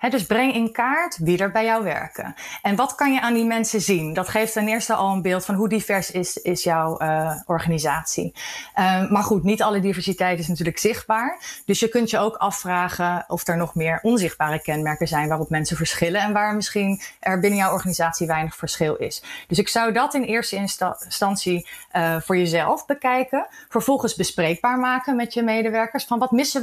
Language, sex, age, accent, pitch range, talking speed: Dutch, female, 30-49, Dutch, 170-220 Hz, 195 wpm